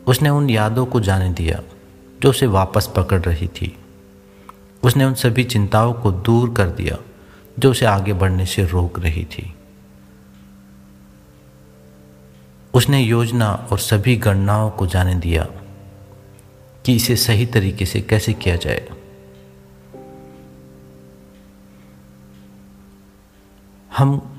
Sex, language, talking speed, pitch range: male, Hindi, 110 wpm, 90-115 Hz